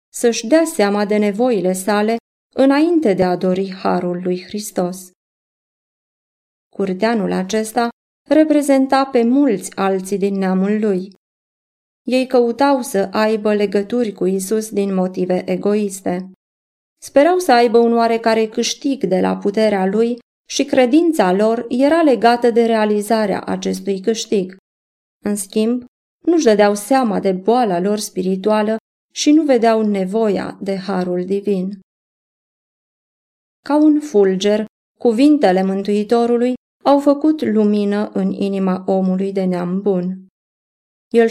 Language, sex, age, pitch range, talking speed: Romanian, female, 20-39, 190-240 Hz, 120 wpm